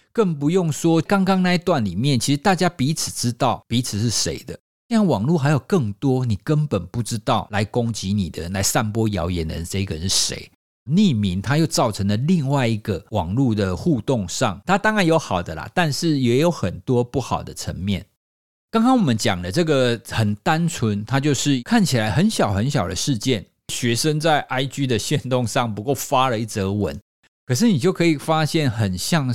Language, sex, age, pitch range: Chinese, male, 50-69, 105-160 Hz